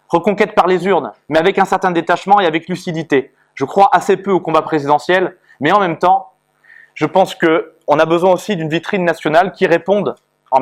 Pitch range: 145-180 Hz